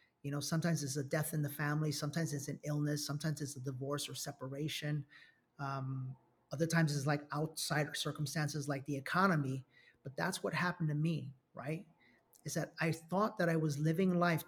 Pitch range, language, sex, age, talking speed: 145-165 Hz, English, male, 30-49, 185 wpm